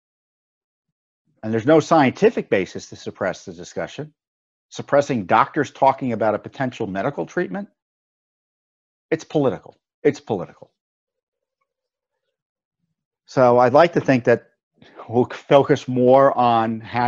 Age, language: 50-69, English